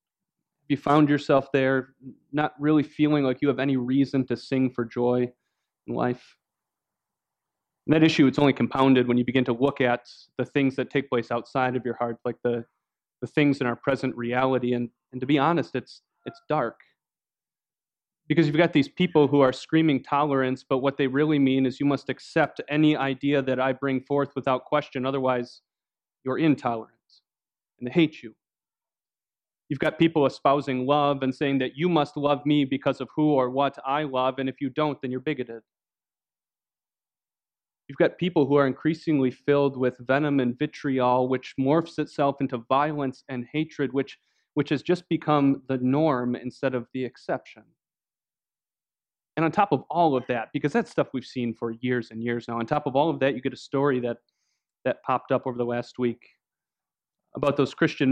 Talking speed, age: 185 wpm, 30-49